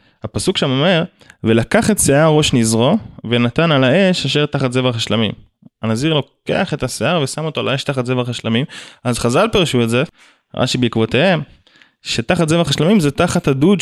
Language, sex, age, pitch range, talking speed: Hebrew, male, 20-39, 115-175 Hz, 170 wpm